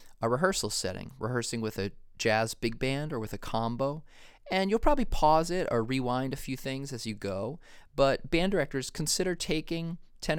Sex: male